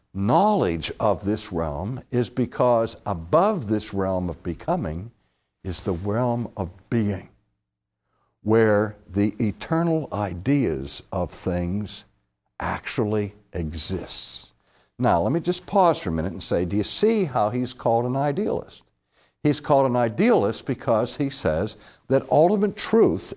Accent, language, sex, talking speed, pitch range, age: American, English, male, 135 wpm, 100-170 Hz, 60-79